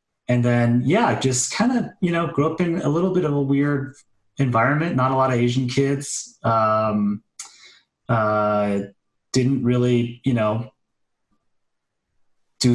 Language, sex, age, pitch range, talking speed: English, male, 30-49, 100-125 Hz, 145 wpm